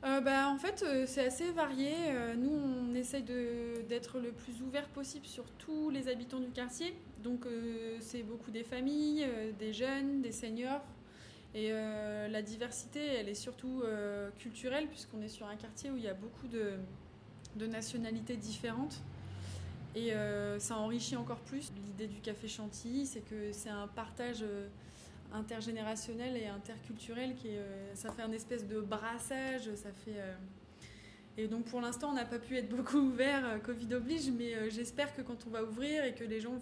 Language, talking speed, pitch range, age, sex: French, 180 wpm, 215-255 Hz, 20-39, female